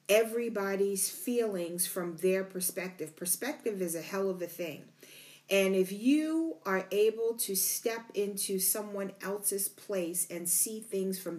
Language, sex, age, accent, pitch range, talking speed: English, female, 40-59, American, 185-220 Hz, 140 wpm